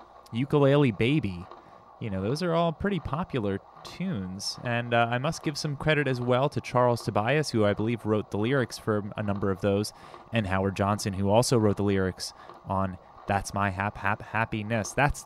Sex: male